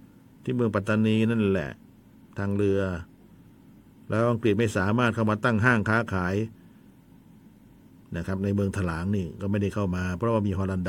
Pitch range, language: 100-140 Hz, Thai